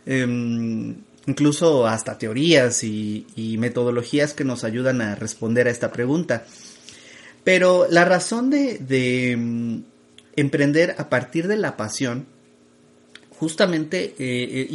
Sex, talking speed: male, 115 wpm